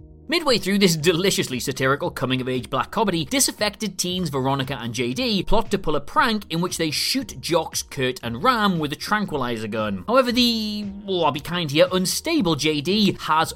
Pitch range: 145-205 Hz